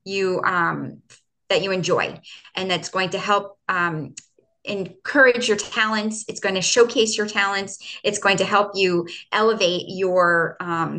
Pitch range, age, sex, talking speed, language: 175-210 Hz, 20-39, female, 155 wpm, English